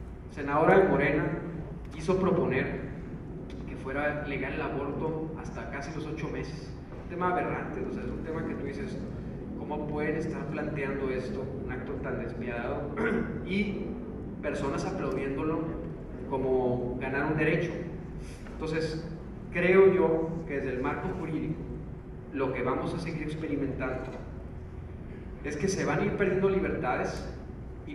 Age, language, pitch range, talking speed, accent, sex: 30-49, Spanish, 135-175 Hz, 135 wpm, Mexican, male